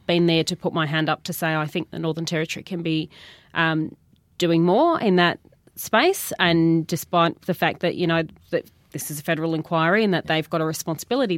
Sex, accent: female, Australian